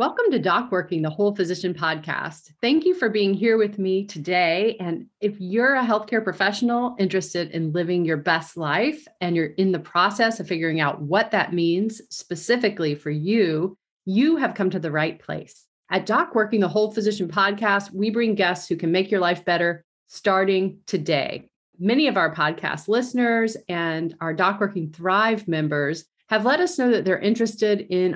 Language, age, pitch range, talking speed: English, 40-59, 175-220 Hz, 185 wpm